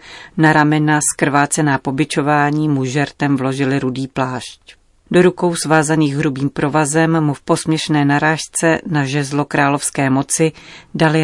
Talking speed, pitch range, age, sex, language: 125 wpm, 140-155 Hz, 40-59, female, Czech